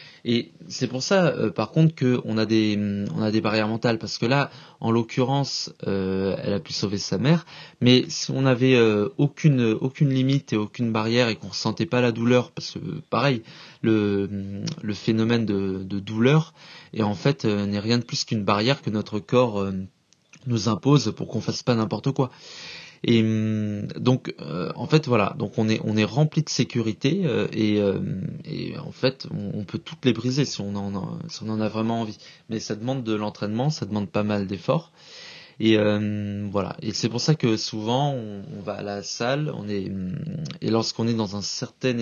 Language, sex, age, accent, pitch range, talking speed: French, male, 20-39, French, 105-135 Hz, 205 wpm